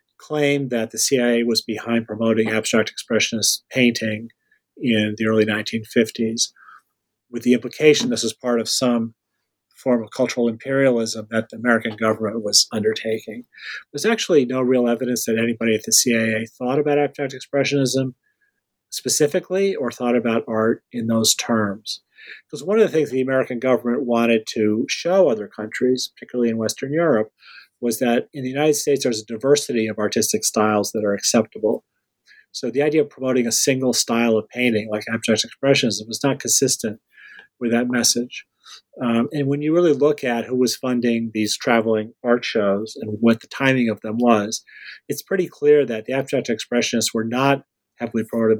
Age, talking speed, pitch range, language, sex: 40-59, 170 wpm, 110-130 Hz, English, male